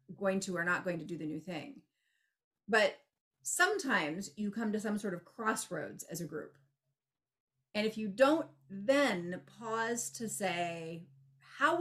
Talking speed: 160 wpm